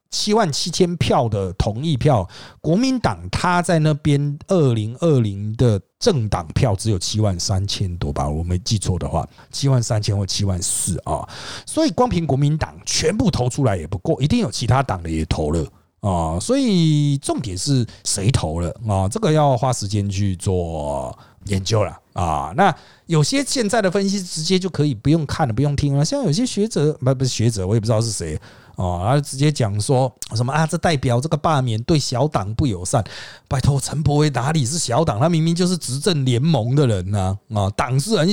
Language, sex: Chinese, male